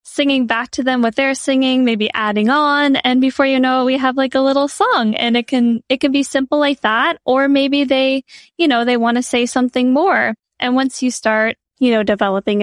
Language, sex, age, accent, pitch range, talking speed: English, female, 10-29, American, 220-265 Hz, 230 wpm